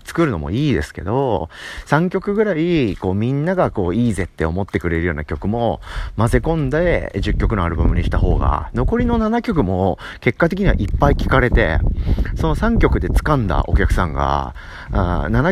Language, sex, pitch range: Japanese, male, 85-135 Hz